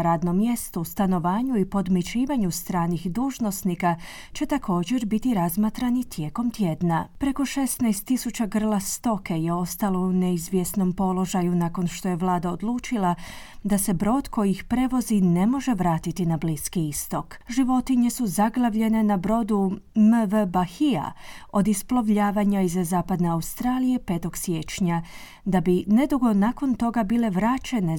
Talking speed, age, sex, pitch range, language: 130 wpm, 30-49, female, 180-235 Hz, Croatian